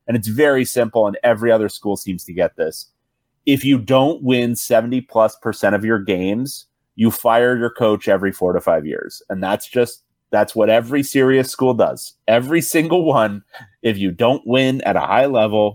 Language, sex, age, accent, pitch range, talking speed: English, male, 30-49, American, 110-140 Hz, 190 wpm